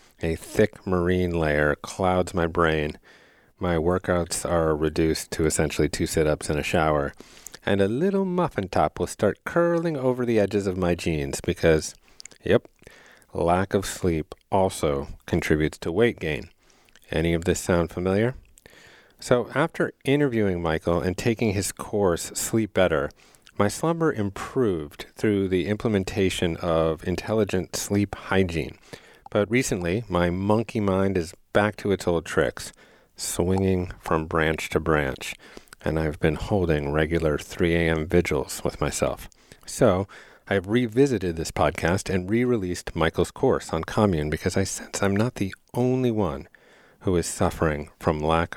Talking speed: 145 wpm